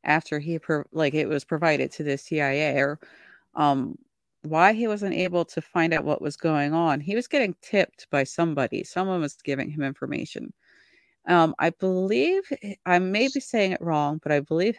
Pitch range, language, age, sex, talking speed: 155-205 Hz, English, 40-59, female, 185 wpm